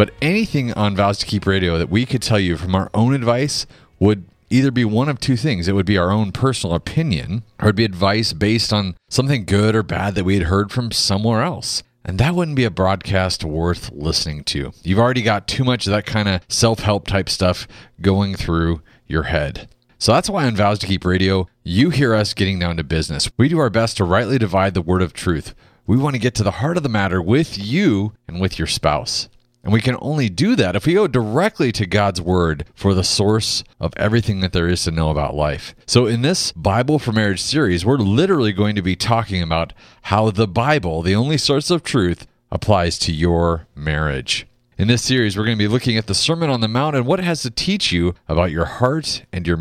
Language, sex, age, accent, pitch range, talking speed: English, male, 30-49, American, 90-120 Hz, 230 wpm